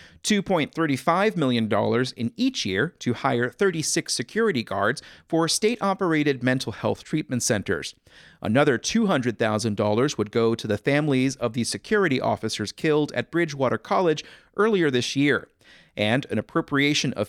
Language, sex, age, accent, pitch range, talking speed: English, male, 40-59, American, 120-160 Hz, 130 wpm